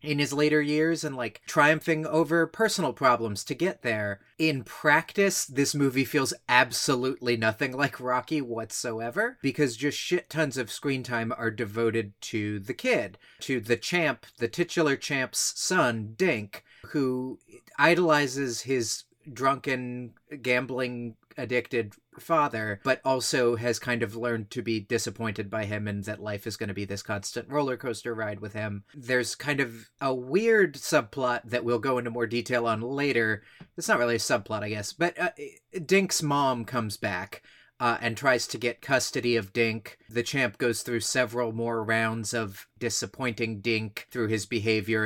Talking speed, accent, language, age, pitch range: 165 wpm, American, English, 30-49, 115-140 Hz